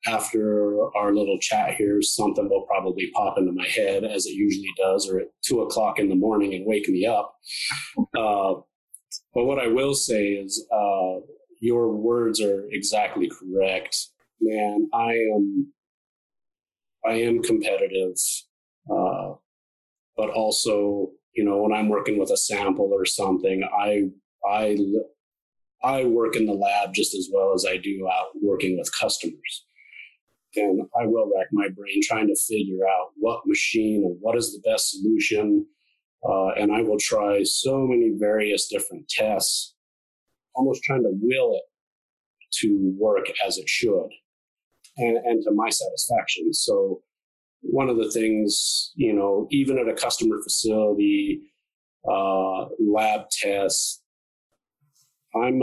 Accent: American